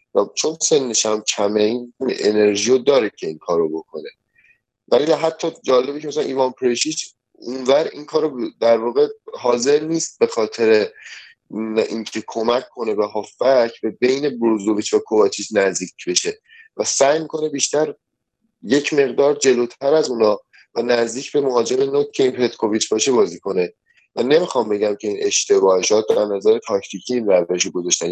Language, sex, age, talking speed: Persian, male, 30-49, 145 wpm